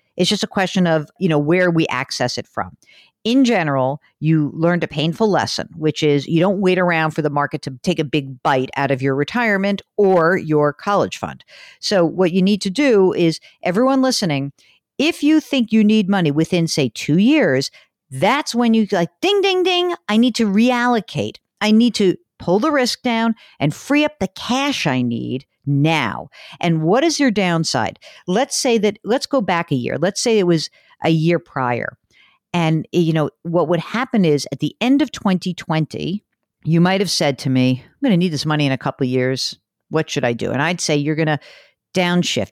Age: 50-69